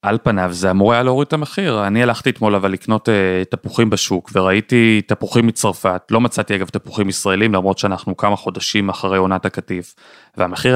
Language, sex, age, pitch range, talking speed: Hebrew, male, 30-49, 100-140 Hz, 180 wpm